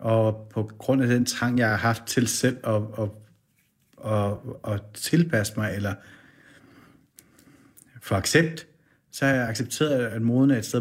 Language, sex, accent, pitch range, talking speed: Danish, male, native, 115-135 Hz, 160 wpm